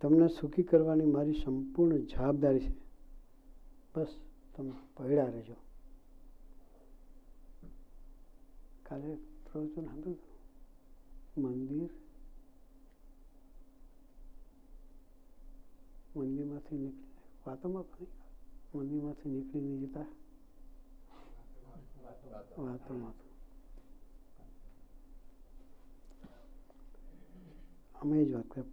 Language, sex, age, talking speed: Gujarati, male, 60-79, 50 wpm